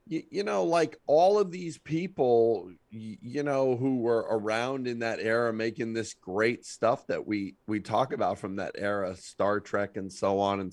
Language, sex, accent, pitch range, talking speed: English, male, American, 100-125 Hz, 185 wpm